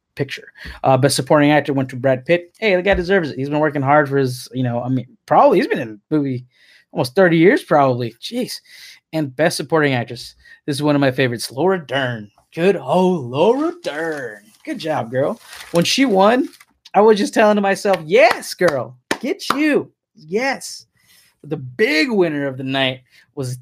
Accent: American